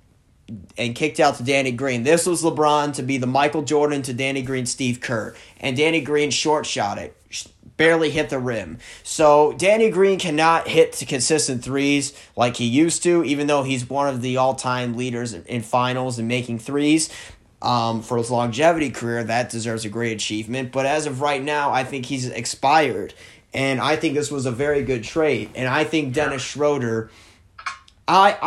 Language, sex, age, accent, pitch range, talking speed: English, male, 30-49, American, 120-150 Hz, 190 wpm